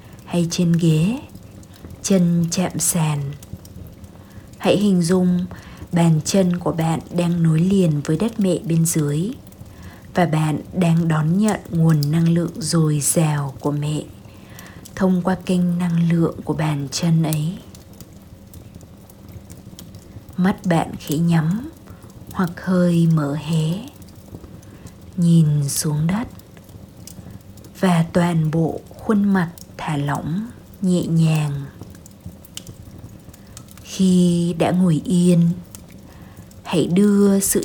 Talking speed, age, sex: 110 wpm, 20-39, female